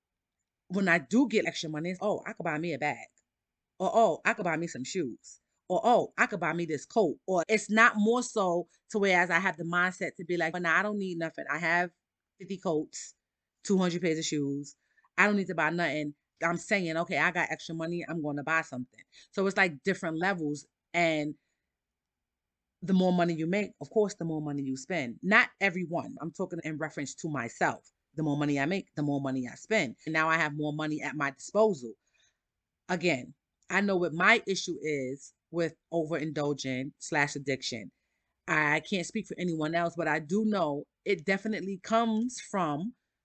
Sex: female